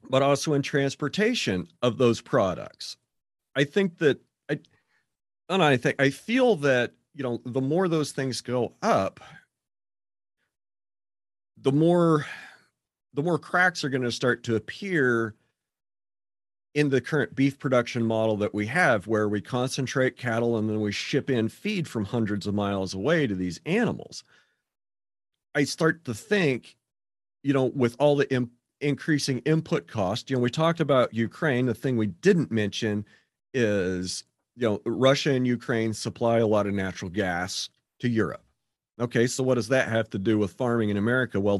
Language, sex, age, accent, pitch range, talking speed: English, male, 40-59, American, 100-135 Hz, 165 wpm